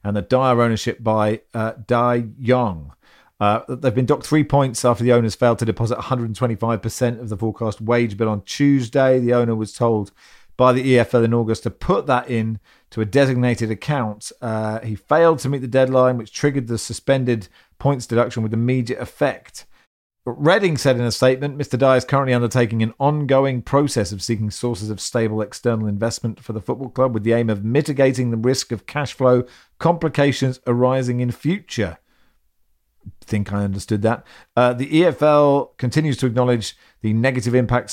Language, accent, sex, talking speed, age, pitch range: English, British, male, 180 wpm, 40-59, 110-130 Hz